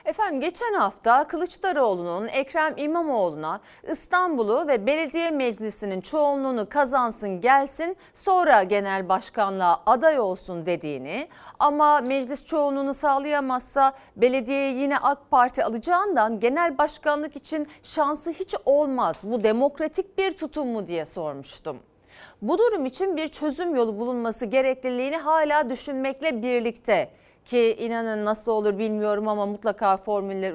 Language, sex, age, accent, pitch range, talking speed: Turkish, female, 40-59, native, 215-310 Hz, 120 wpm